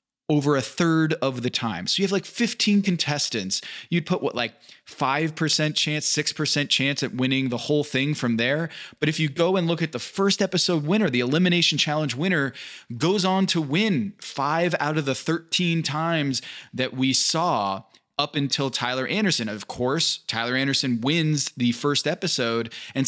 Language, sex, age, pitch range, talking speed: English, male, 20-39, 130-170 Hz, 175 wpm